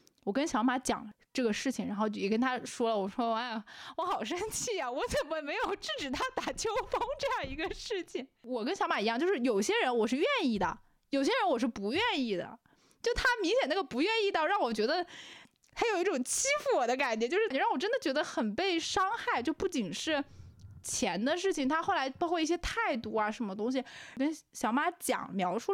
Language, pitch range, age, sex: Chinese, 225-335 Hz, 20-39, female